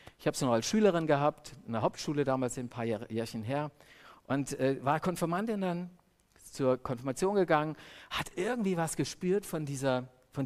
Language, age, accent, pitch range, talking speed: German, 50-69, German, 115-160 Hz, 170 wpm